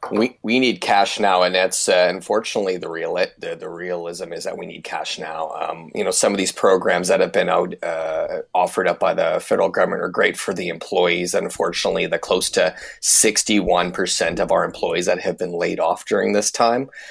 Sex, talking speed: male, 205 wpm